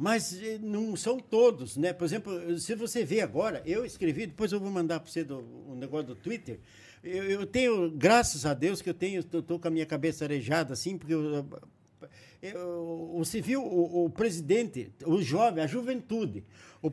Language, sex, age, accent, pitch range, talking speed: Portuguese, male, 60-79, Brazilian, 145-205 Hz, 175 wpm